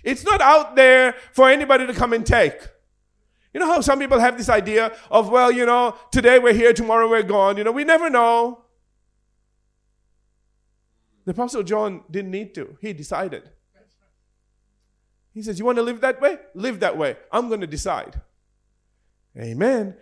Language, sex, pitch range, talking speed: English, male, 175-255 Hz, 170 wpm